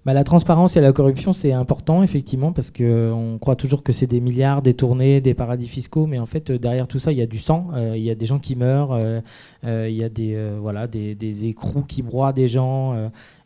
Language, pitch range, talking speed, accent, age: French, 120-145 Hz, 240 wpm, French, 20-39